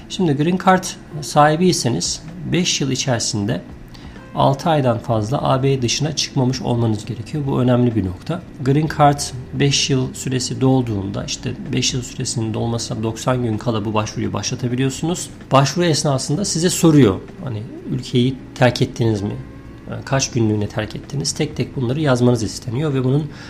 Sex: male